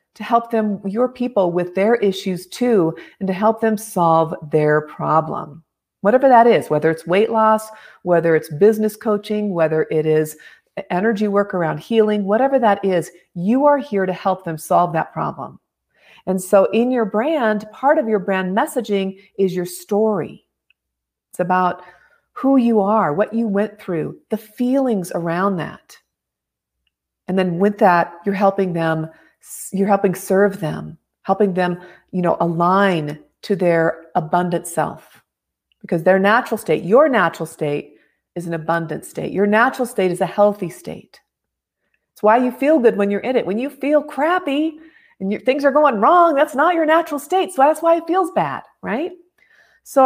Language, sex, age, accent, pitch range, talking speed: English, female, 40-59, American, 175-235 Hz, 170 wpm